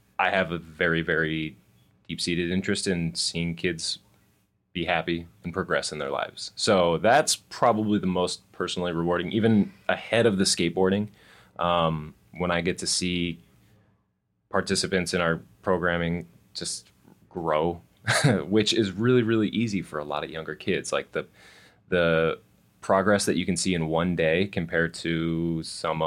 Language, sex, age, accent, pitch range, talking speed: English, male, 20-39, American, 80-95 Hz, 150 wpm